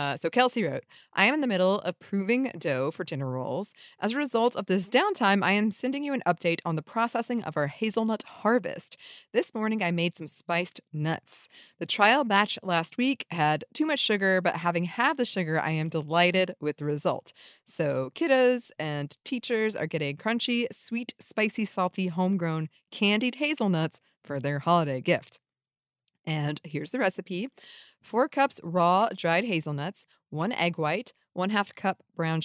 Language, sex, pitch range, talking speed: English, female, 170-230 Hz, 175 wpm